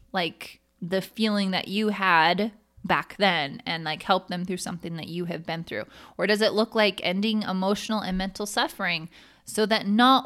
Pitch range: 175-220 Hz